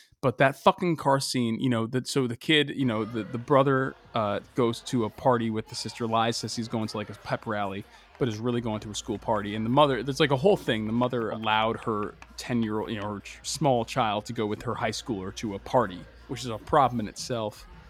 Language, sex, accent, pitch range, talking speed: English, male, American, 115-155 Hz, 250 wpm